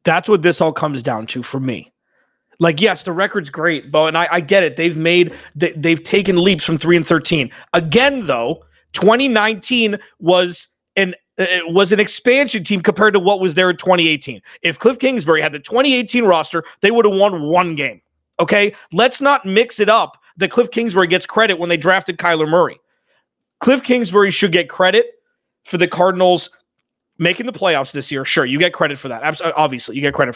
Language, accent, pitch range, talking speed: English, American, 170-225 Hz, 200 wpm